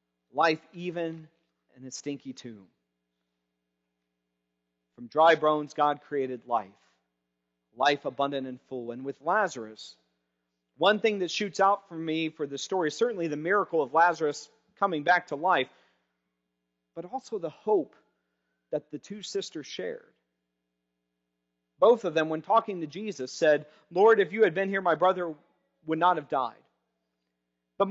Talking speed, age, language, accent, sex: 150 wpm, 40-59, English, American, male